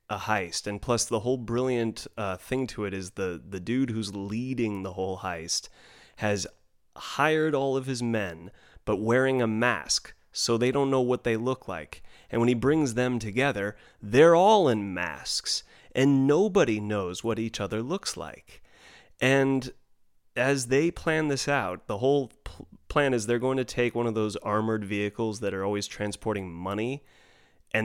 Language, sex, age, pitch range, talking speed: English, male, 30-49, 105-130 Hz, 175 wpm